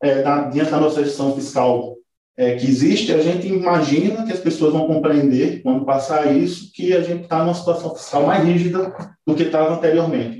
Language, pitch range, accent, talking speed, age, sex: Portuguese, 120-155 Hz, Brazilian, 190 wpm, 20-39, male